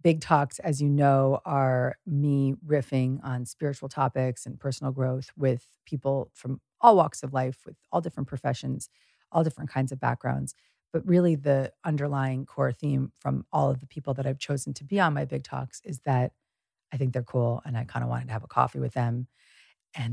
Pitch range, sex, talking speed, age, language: 135-165 Hz, female, 205 wpm, 40-59, English